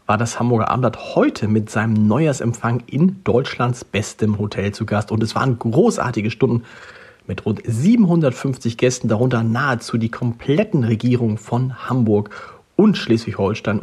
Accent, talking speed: German, 140 wpm